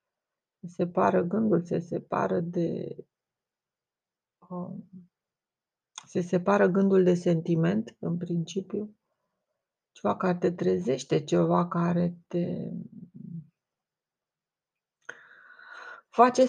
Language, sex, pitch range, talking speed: Romanian, female, 175-205 Hz, 75 wpm